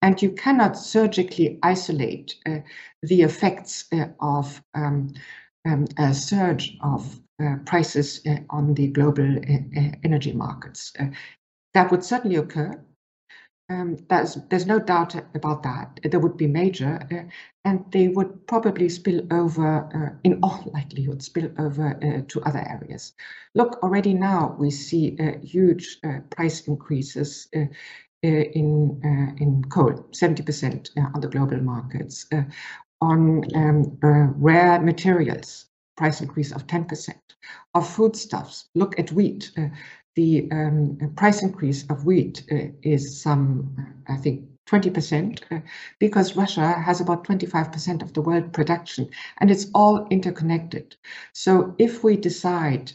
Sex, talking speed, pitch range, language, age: female, 140 wpm, 145-175 Hz, English, 60-79